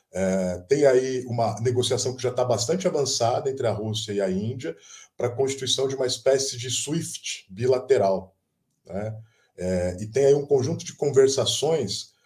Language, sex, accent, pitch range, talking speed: Portuguese, male, Brazilian, 110-140 Hz, 165 wpm